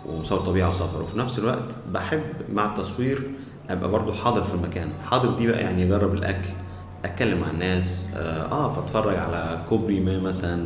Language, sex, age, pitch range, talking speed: Arabic, male, 20-39, 90-115 Hz, 165 wpm